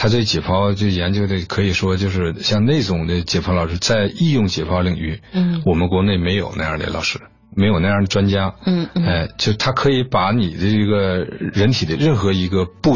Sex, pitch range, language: male, 90-110 Hz, Chinese